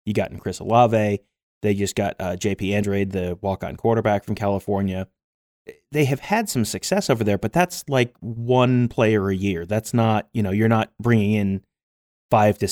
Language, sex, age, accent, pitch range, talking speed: English, male, 30-49, American, 95-115 Hz, 195 wpm